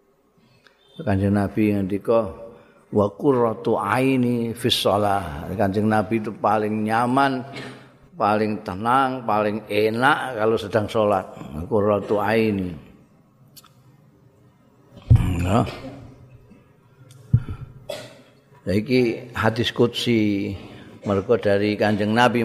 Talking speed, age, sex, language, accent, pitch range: 80 wpm, 50-69, male, Indonesian, native, 100-120 Hz